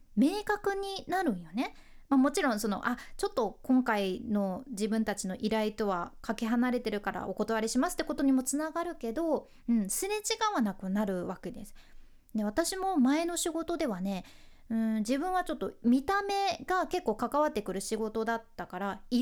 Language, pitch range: Japanese, 215-325 Hz